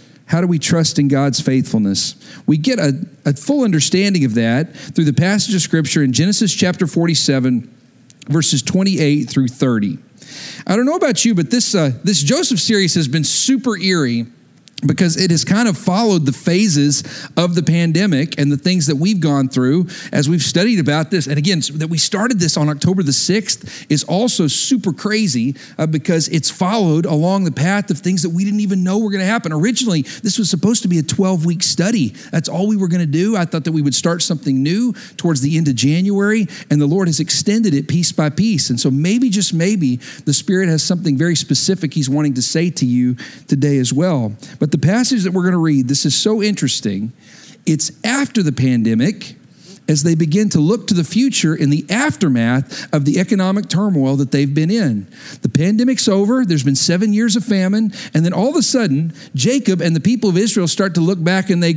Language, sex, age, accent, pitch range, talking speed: English, male, 50-69, American, 145-200 Hz, 210 wpm